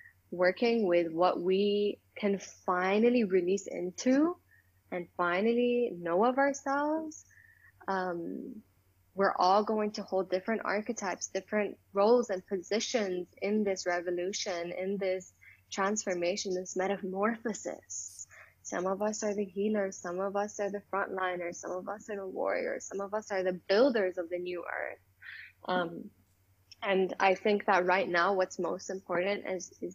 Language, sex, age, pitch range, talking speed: English, female, 10-29, 175-205 Hz, 145 wpm